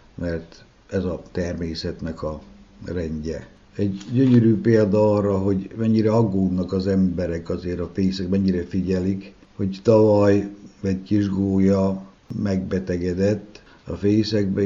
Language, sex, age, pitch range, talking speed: Hungarian, male, 60-79, 90-105 Hz, 110 wpm